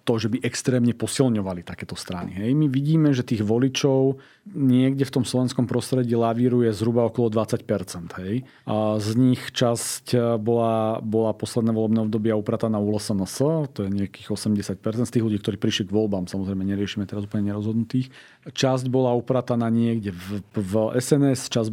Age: 40-59